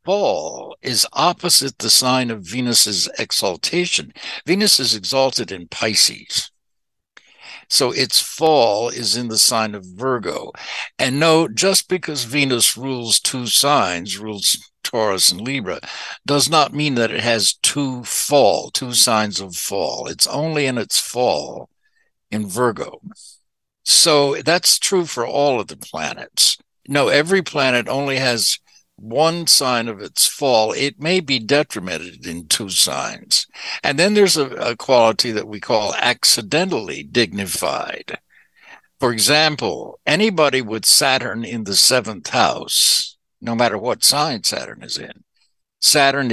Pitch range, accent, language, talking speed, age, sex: 110-145 Hz, American, English, 135 wpm, 60-79, male